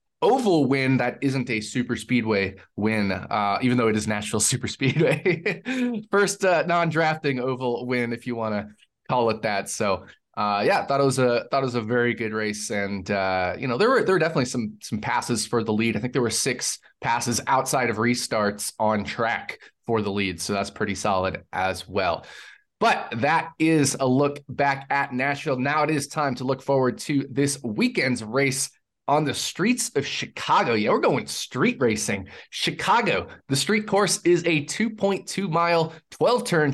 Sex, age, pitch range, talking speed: male, 20-39, 120-155 Hz, 185 wpm